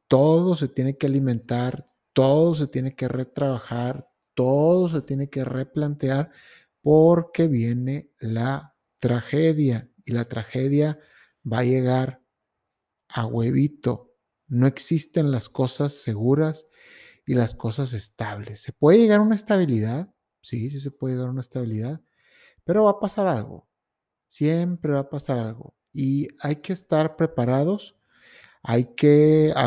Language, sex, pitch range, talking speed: Spanish, male, 120-155 Hz, 140 wpm